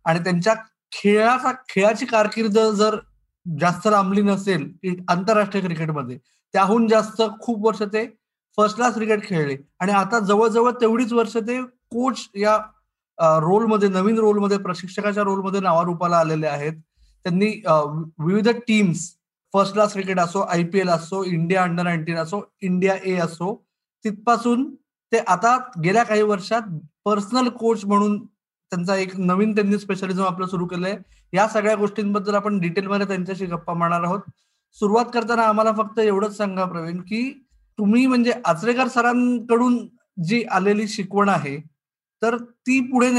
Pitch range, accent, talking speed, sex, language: 180-225 Hz, native, 105 wpm, male, Marathi